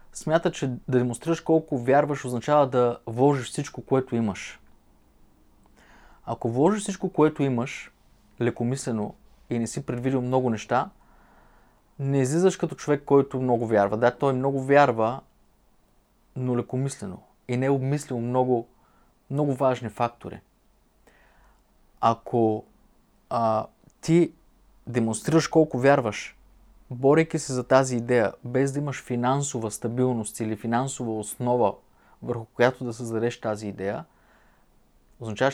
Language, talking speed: Bulgarian, 120 wpm